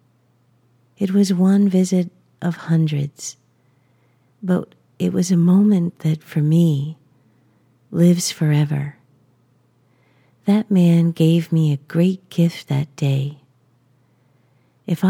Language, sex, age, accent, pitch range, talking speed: English, female, 50-69, American, 130-170 Hz, 105 wpm